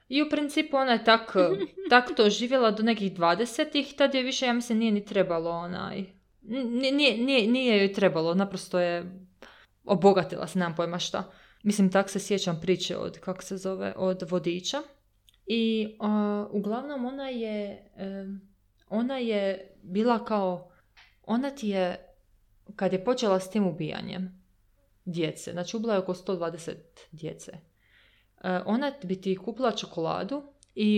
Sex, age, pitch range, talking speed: female, 20-39, 185-235 Hz, 145 wpm